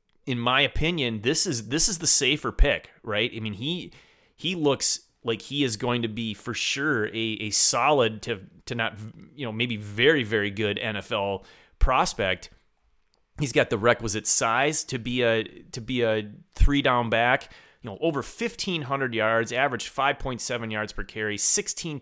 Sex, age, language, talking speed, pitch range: male, 30-49, English, 180 wpm, 105-140 Hz